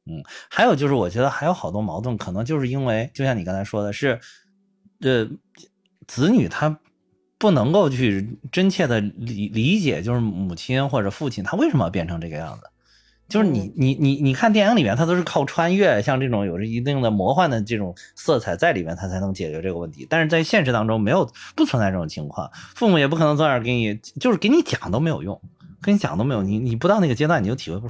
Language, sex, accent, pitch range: Chinese, male, native, 105-155 Hz